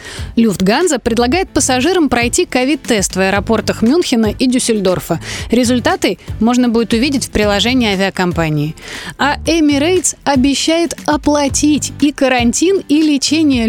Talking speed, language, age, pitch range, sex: 110 wpm, Russian, 30-49, 220-290 Hz, female